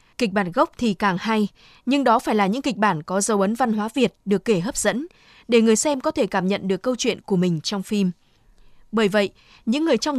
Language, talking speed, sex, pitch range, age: Vietnamese, 245 wpm, female, 195-240 Hz, 20-39